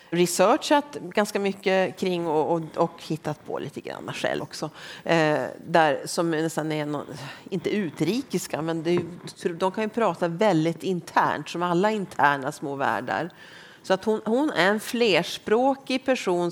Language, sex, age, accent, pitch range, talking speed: Swedish, female, 40-59, native, 160-210 Hz, 155 wpm